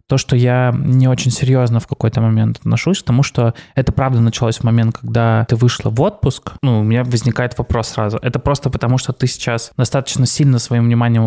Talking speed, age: 210 wpm, 20-39